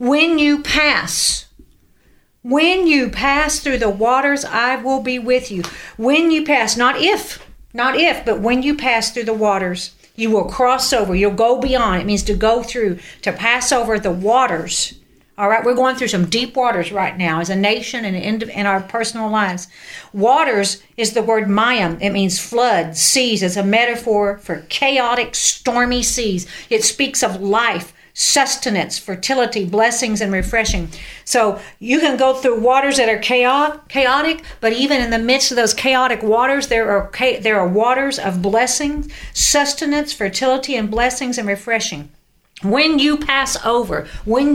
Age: 50-69